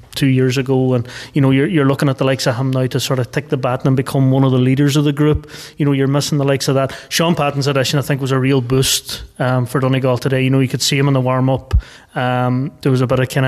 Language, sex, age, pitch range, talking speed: English, male, 20-39, 130-150 Hz, 300 wpm